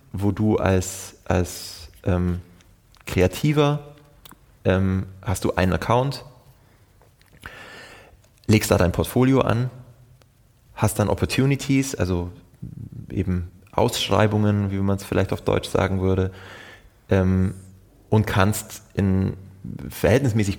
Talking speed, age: 100 wpm, 20-39